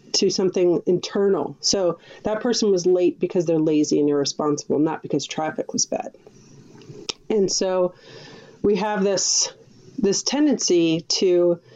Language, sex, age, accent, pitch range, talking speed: English, female, 30-49, American, 170-200 Hz, 135 wpm